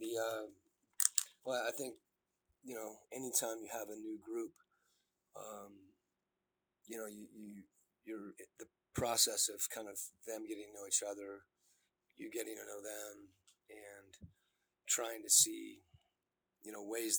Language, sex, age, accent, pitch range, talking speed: English, male, 30-49, American, 100-125 Hz, 150 wpm